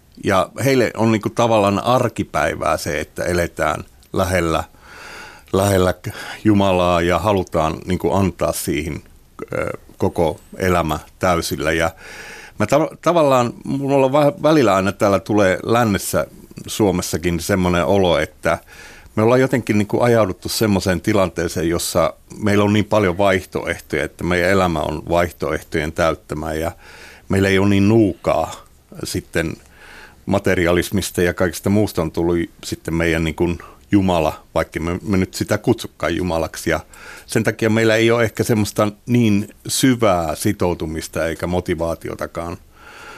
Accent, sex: native, male